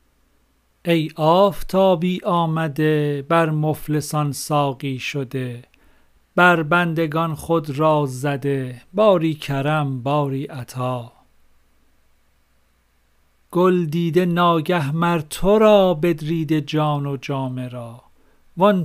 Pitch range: 130-170 Hz